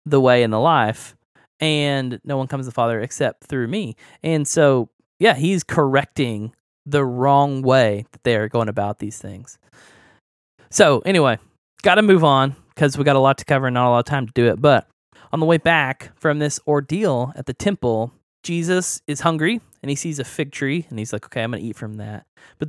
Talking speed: 215 wpm